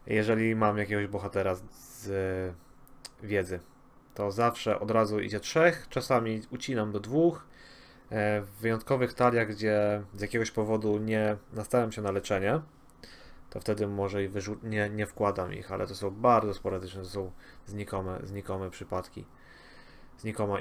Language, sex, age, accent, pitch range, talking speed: Polish, male, 30-49, native, 105-130 Hz, 150 wpm